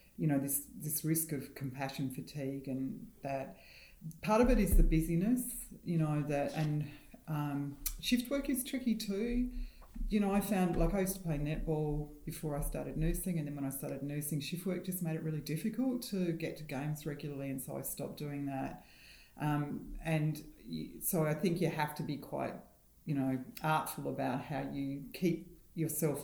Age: 40-59